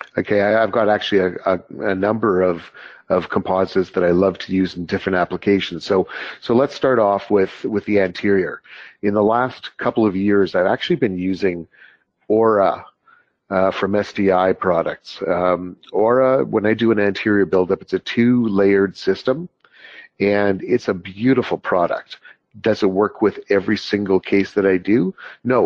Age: 40-59